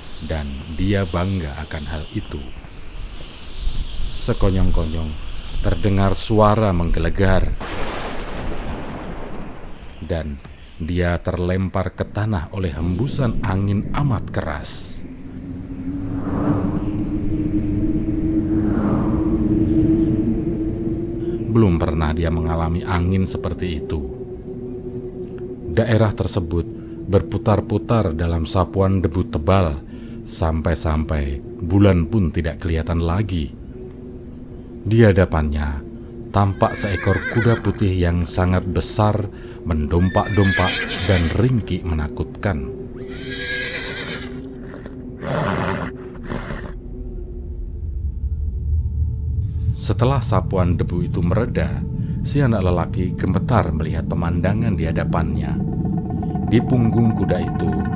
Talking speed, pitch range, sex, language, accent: 70 wpm, 85-110 Hz, male, Indonesian, native